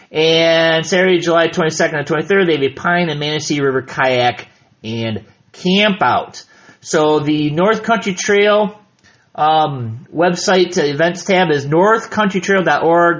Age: 30-49